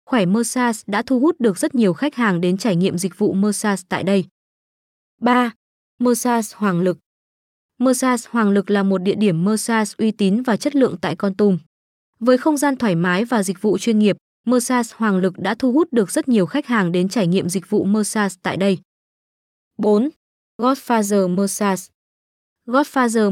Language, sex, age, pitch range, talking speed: Vietnamese, female, 20-39, 195-240 Hz, 185 wpm